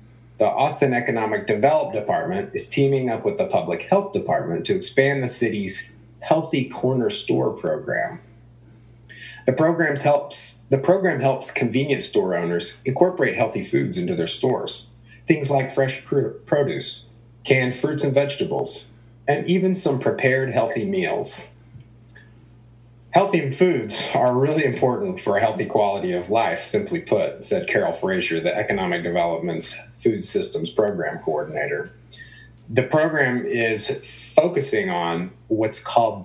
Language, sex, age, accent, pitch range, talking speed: English, male, 30-49, American, 115-140 Hz, 130 wpm